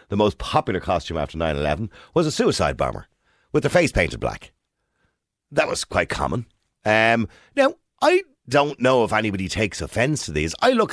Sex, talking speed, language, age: male, 175 wpm, English, 50-69